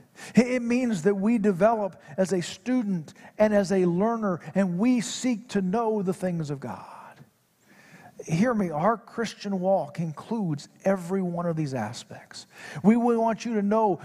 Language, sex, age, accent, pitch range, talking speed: English, male, 50-69, American, 165-210 Hz, 160 wpm